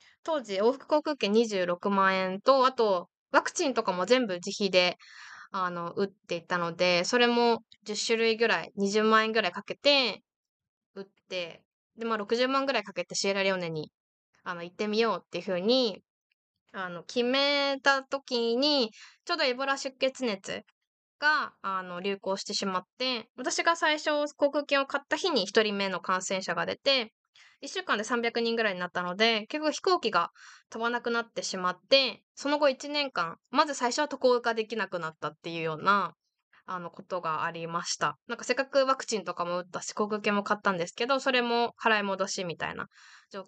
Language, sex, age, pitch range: Japanese, female, 20-39, 185-270 Hz